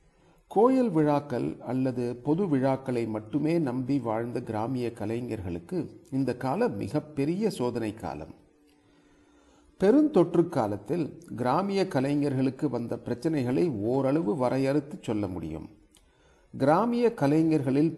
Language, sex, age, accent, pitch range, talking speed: Tamil, male, 40-59, native, 120-165 Hz, 95 wpm